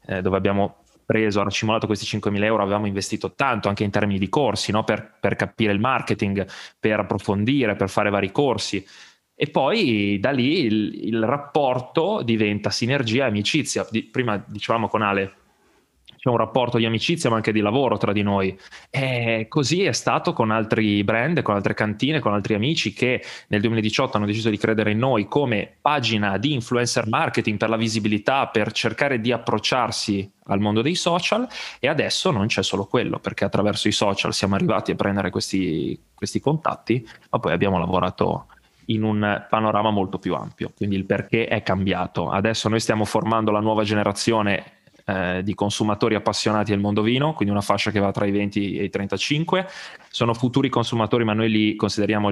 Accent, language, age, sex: native, Italian, 20-39, male